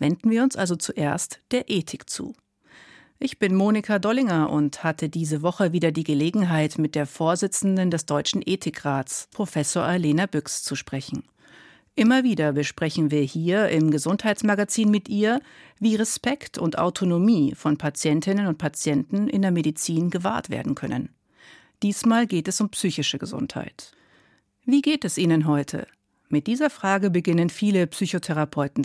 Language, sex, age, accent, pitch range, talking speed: German, female, 50-69, German, 150-210 Hz, 145 wpm